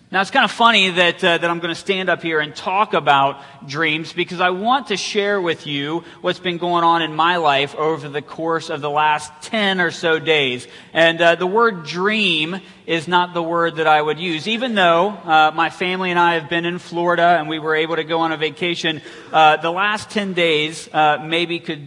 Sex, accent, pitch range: male, American, 150-175 Hz